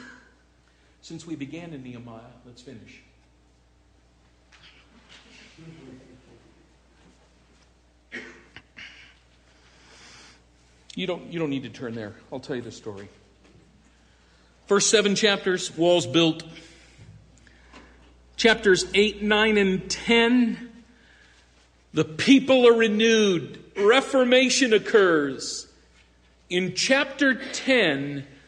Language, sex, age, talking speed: English, male, 50-69, 80 wpm